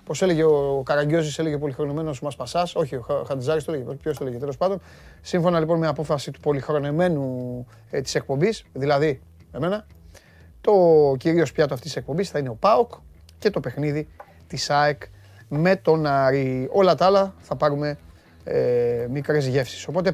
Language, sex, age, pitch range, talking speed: Greek, male, 30-49, 130-175 Hz, 160 wpm